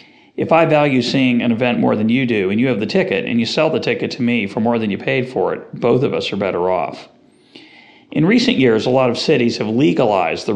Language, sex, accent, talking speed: English, male, American, 255 wpm